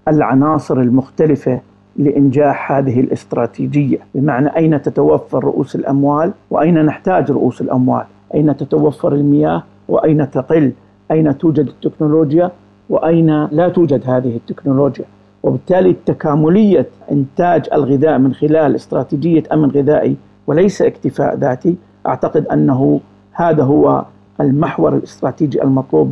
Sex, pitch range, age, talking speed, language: male, 130-160 Hz, 50-69, 105 wpm, Arabic